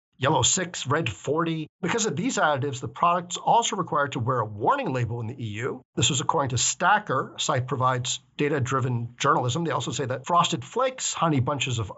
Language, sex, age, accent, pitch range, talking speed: English, male, 50-69, American, 130-175 Hz, 195 wpm